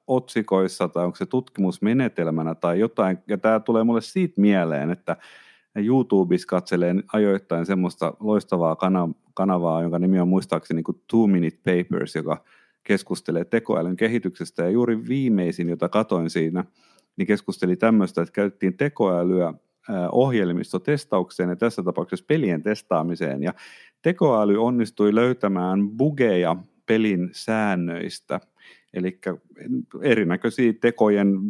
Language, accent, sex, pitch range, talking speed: Finnish, native, male, 85-105 Hz, 110 wpm